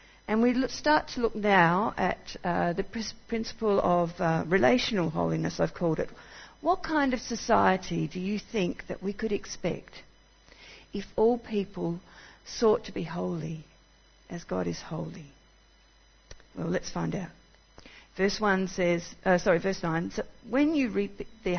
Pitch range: 170-225 Hz